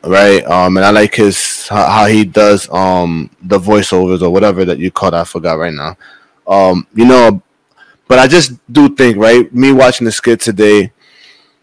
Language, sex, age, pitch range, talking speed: English, male, 20-39, 105-130 Hz, 180 wpm